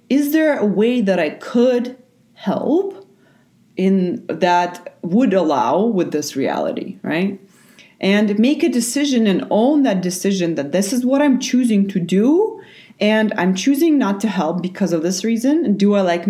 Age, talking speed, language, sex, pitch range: 30-49, 165 wpm, English, female, 190-255 Hz